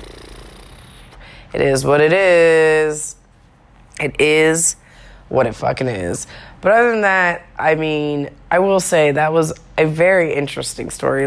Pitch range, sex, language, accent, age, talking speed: 140-165 Hz, female, English, American, 20-39, 140 wpm